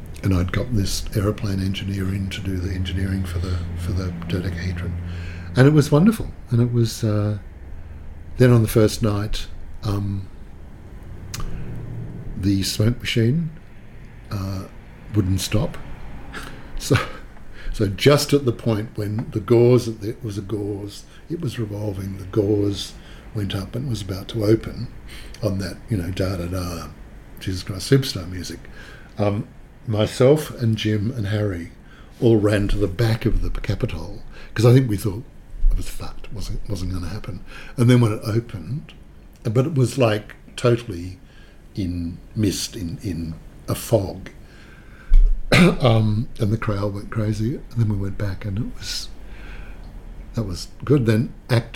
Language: English